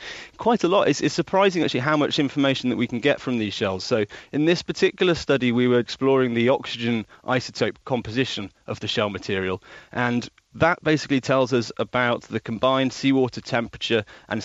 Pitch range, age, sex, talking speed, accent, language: 110-130 Hz, 30-49, male, 185 wpm, British, English